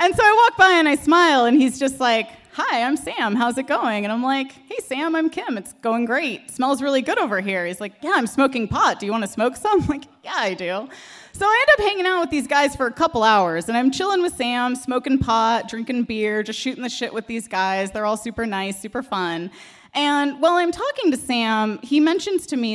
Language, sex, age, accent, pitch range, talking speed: English, female, 20-39, American, 220-315 Hz, 255 wpm